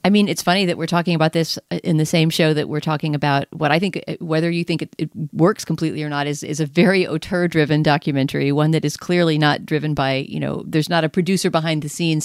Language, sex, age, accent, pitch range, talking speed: English, female, 40-59, American, 150-180 Hz, 255 wpm